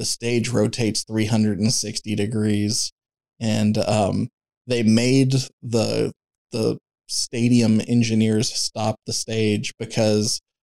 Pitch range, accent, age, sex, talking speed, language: 110-130 Hz, American, 20-39, male, 95 wpm, English